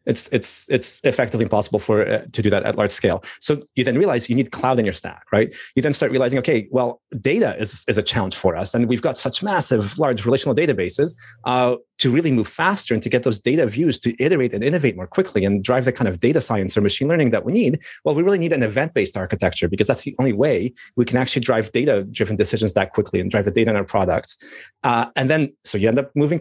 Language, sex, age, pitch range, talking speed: English, male, 30-49, 110-140 Hz, 250 wpm